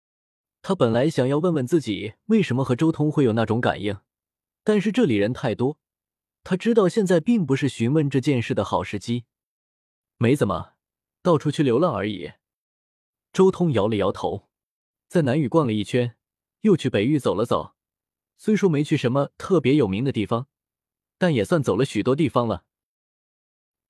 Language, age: Chinese, 20-39